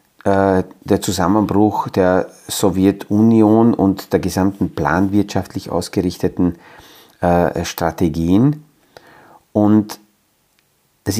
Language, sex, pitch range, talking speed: German, male, 90-110 Hz, 70 wpm